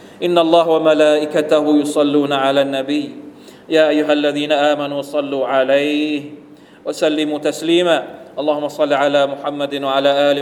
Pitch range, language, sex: 140-155 Hz, Thai, male